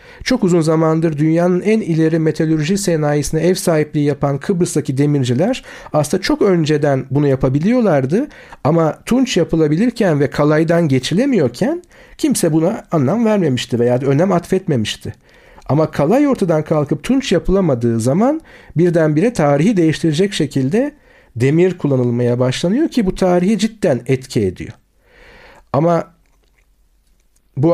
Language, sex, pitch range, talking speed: Turkish, male, 145-195 Hz, 115 wpm